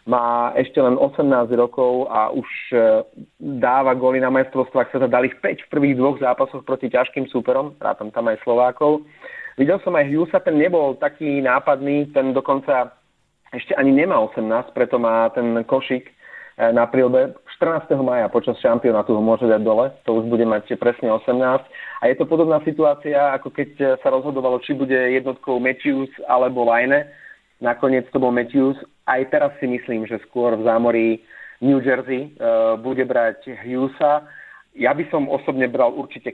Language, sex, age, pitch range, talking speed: Slovak, male, 30-49, 120-140 Hz, 165 wpm